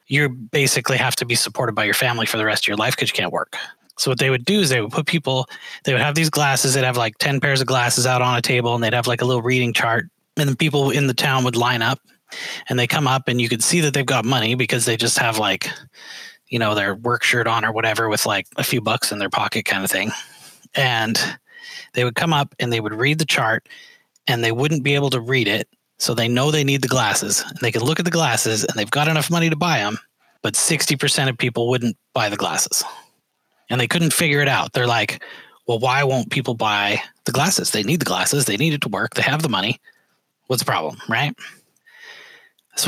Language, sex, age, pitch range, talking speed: English, male, 30-49, 120-150 Hz, 250 wpm